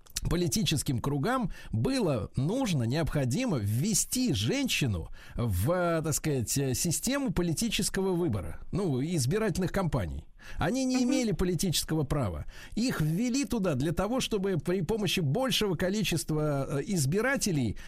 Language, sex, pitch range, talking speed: Russian, male, 150-210 Hz, 105 wpm